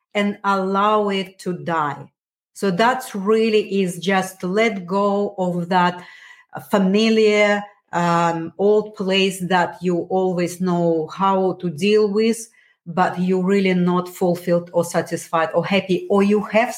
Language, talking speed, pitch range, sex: English, 135 wpm, 180-220 Hz, female